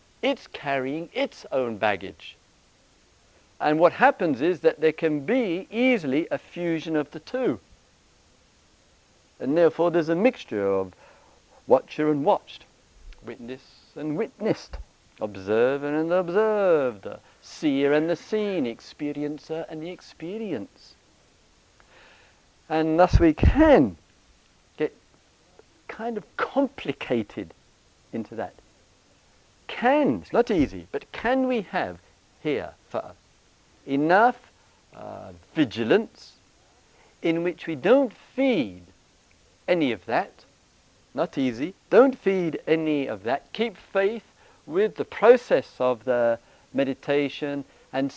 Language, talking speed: English, 110 wpm